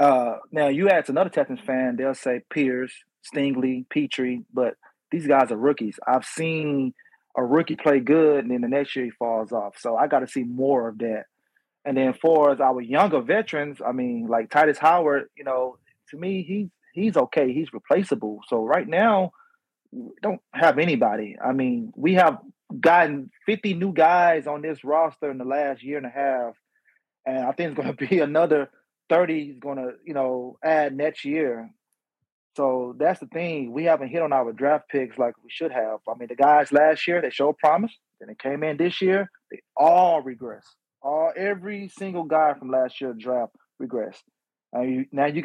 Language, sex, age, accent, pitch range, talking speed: English, male, 30-49, American, 130-165 Hz, 195 wpm